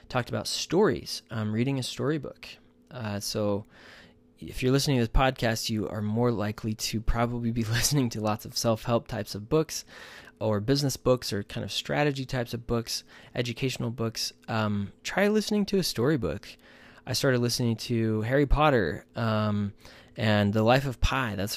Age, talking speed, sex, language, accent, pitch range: 20-39, 170 wpm, male, English, American, 105-125 Hz